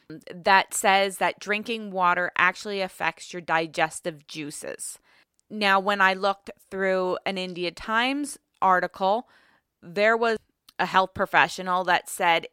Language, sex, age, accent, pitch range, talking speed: English, female, 20-39, American, 180-225 Hz, 125 wpm